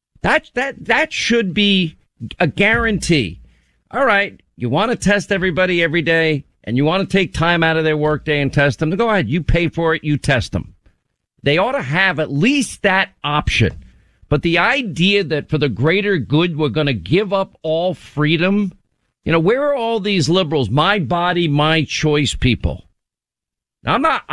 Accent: American